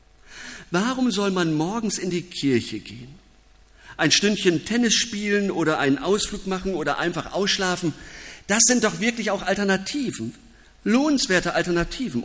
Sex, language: male, German